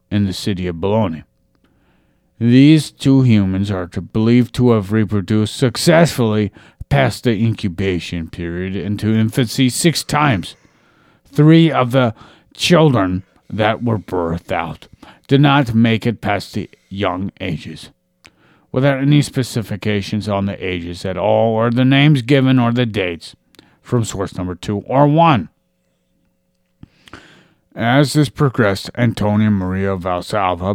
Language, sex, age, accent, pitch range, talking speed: English, male, 50-69, American, 95-130 Hz, 125 wpm